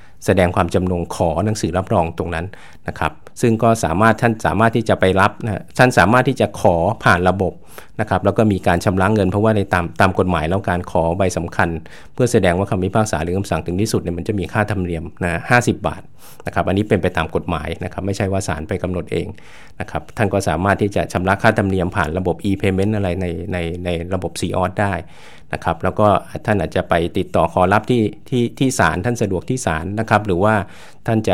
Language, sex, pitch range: English, male, 85-110 Hz